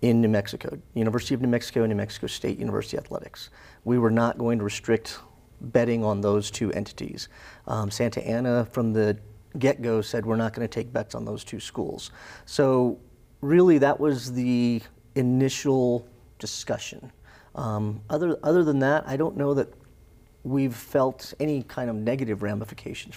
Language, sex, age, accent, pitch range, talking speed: English, male, 40-59, American, 110-130 Hz, 165 wpm